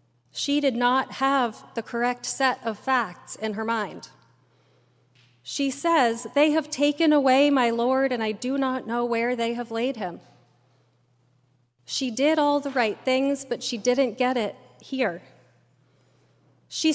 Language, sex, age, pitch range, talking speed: English, female, 30-49, 195-275 Hz, 150 wpm